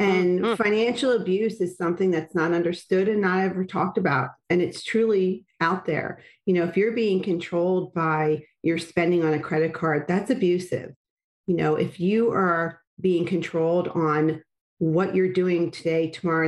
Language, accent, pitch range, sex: English, American, 160-190 Hz, female